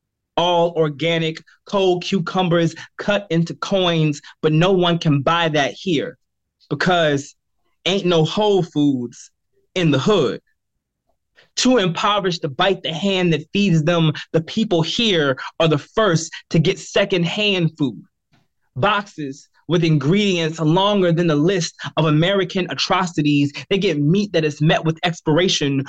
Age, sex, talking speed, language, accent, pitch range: 20-39, male, 135 wpm, English, American, 160-200 Hz